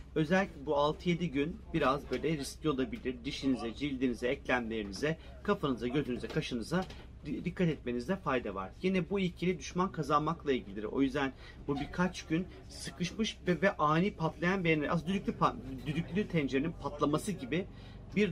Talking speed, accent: 140 wpm, native